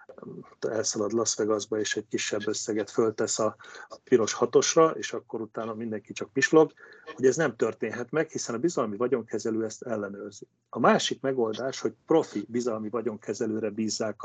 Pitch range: 110-130 Hz